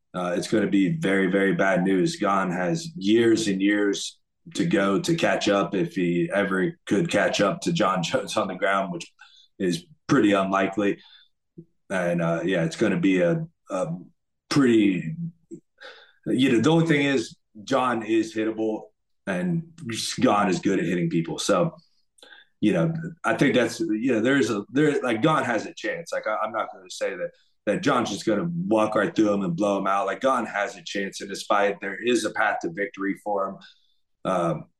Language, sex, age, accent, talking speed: English, male, 30-49, American, 195 wpm